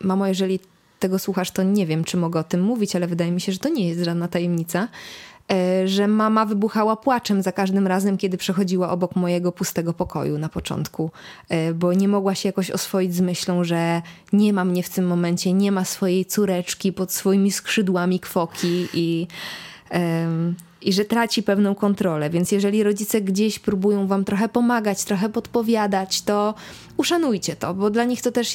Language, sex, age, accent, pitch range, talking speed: Polish, female, 20-39, native, 185-220 Hz, 175 wpm